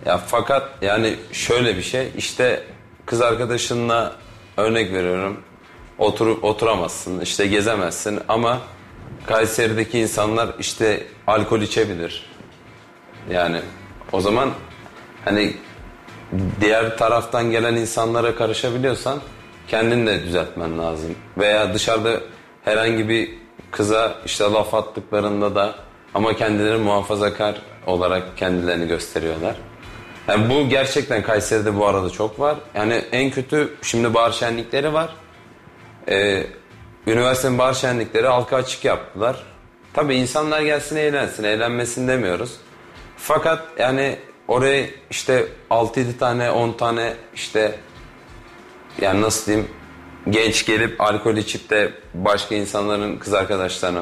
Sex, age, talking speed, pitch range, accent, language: male, 30-49, 110 wpm, 95-115 Hz, native, Turkish